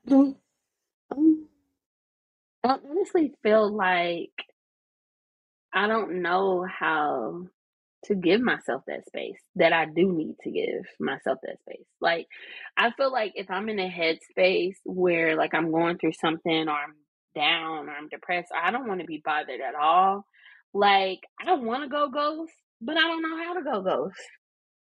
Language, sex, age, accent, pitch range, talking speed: English, female, 20-39, American, 165-235 Hz, 160 wpm